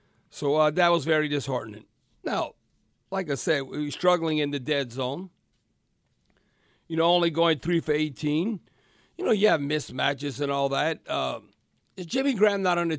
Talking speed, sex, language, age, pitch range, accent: 175 wpm, male, English, 50-69, 145-180 Hz, American